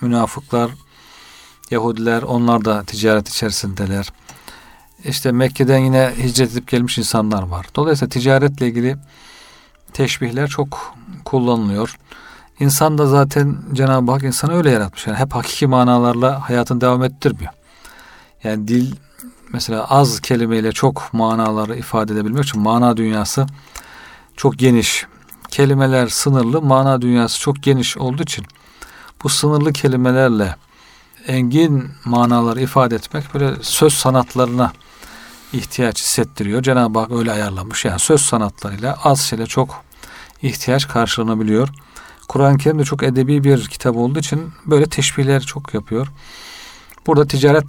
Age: 40-59